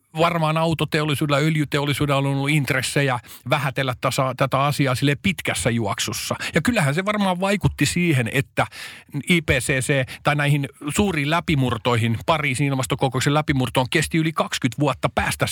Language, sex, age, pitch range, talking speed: Finnish, male, 50-69, 130-170 Hz, 130 wpm